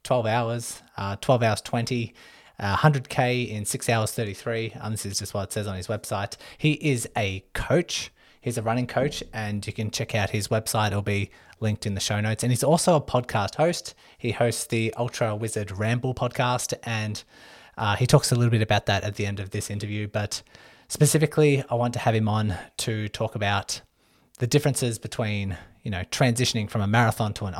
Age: 20-39